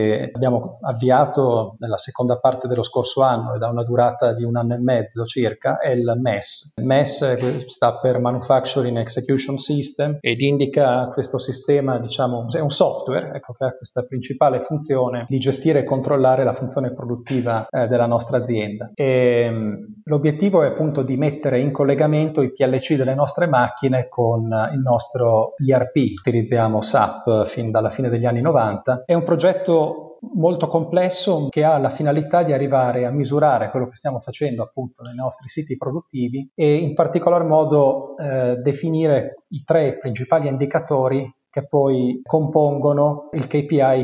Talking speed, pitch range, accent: 155 wpm, 125-150 Hz, native